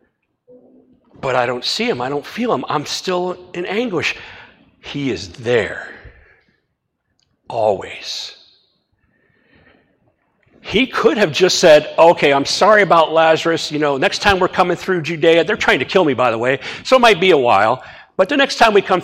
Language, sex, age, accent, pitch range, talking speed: English, male, 50-69, American, 150-185 Hz, 175 wpm